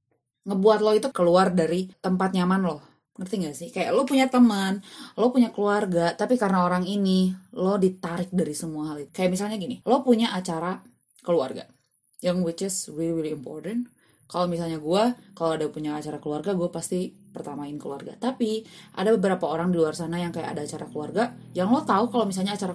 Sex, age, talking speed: female, 20-39, 185 wpm